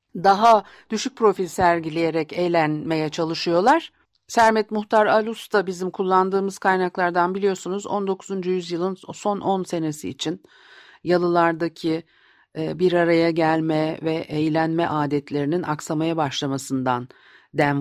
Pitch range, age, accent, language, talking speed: 155-185 Hz, 50-69, native, Turkish, 100 wpm